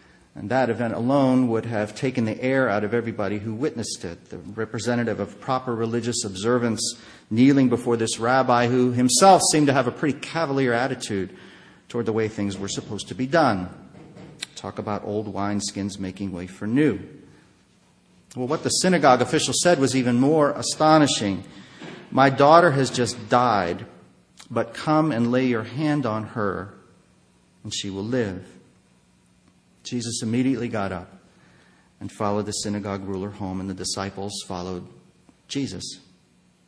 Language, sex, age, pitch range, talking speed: English, male, 40-59, 100-130 Hz, 150 wpm